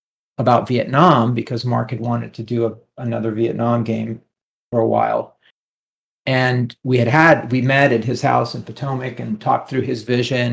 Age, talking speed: 40-59, 170 wpm